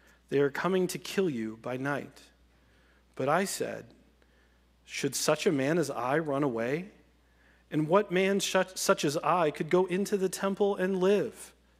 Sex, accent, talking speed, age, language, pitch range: male, American, 165 wpm, 40-59, English, 125-175 Hz